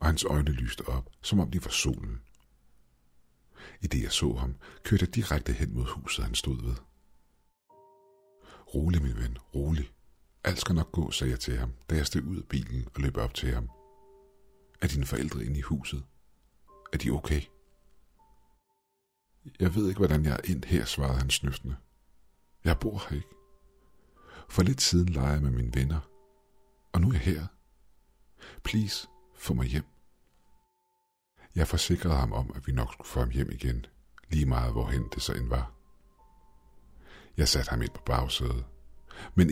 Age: 60-79